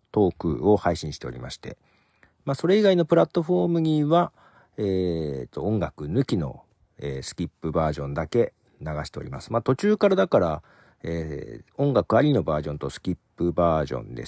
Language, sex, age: Japanese, male, 50-69